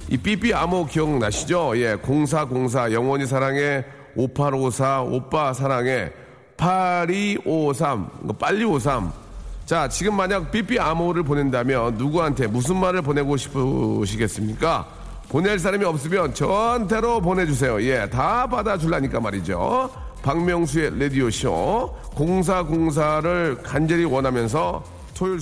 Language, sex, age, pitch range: Korean, male, 40-59, 135-185 Hz